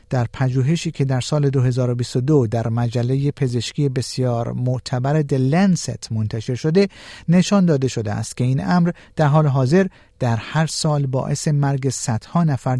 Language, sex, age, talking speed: Persian, male, 50-69, 145 wpm